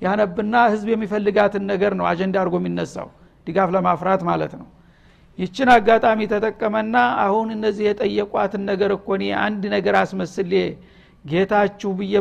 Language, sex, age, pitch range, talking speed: Amharic, male, 60-79, 195-225 Hz, 135 wpm